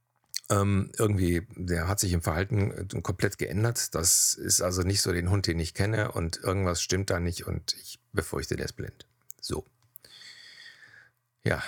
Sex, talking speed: male, 160 wpm